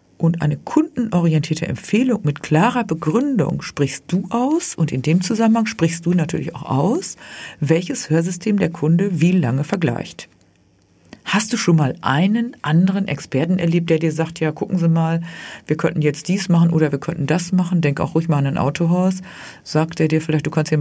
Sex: female